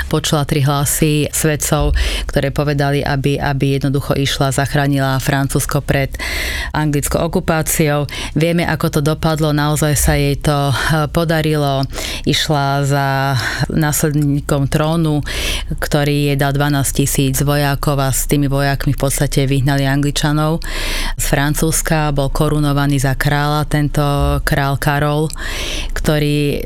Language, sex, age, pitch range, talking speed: English, female, 30-49, 140-150 Hz, 115 wpm